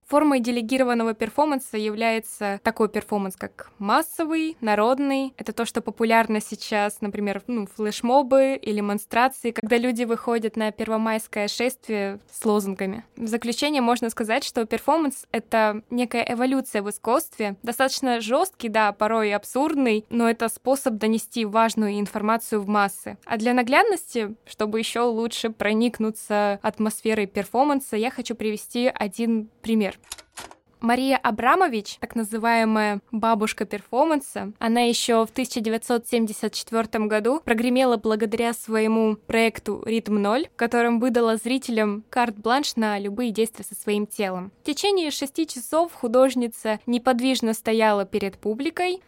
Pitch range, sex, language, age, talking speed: 215-245 Hz, female, Russian, 20-39, 125 wpm